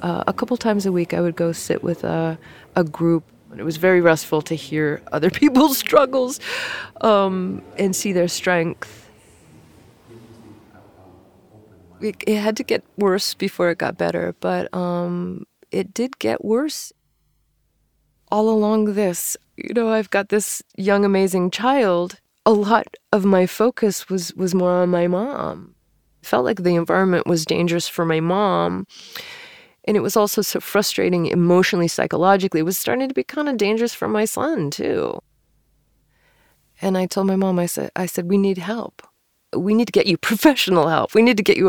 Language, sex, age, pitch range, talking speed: English, female, 20-39, 170-210 Hz, 175 wpm